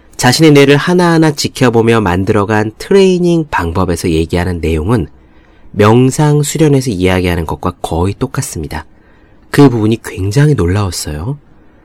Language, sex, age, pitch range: Korean, male, 30-49, 95-135 Hz